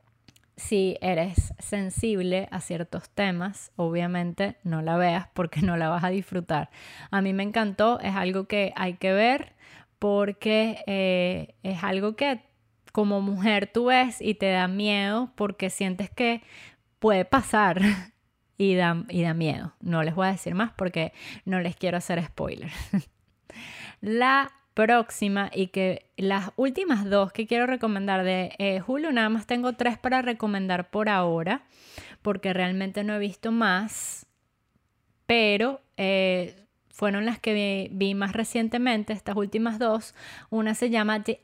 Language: Spanish